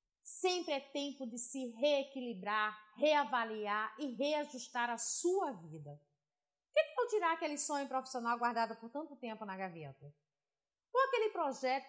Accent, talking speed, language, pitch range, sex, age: Brazilian, 140 wpm, Portuguese, 230-325 Hz, female, 30-49